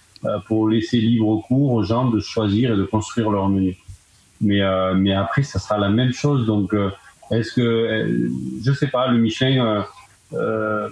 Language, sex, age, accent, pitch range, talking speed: French, male, 30-49, French, 100-115 Hz, 185 wpm